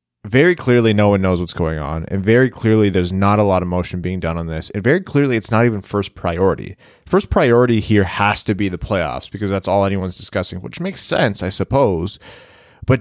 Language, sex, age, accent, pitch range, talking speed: English, male, 20-39, American, 95-120 Hz, 220 wpm